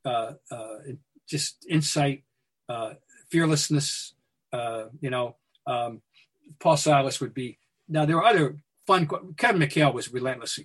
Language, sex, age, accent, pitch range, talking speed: English, male, 50-69, American, 130-155 Hz, 130 wpm